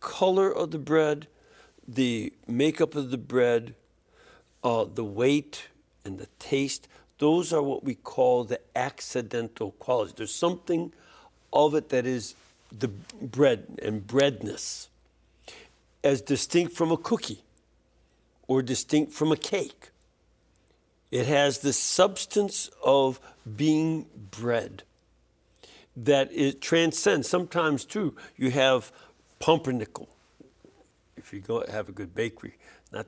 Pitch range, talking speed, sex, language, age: 120-160 Hz, 120 wpm, male, English, 60-79